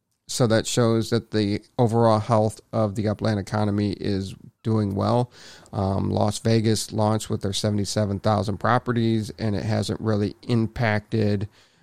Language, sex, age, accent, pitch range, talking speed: English, male, 40-59, American, 105-120 Hz, 140 wpm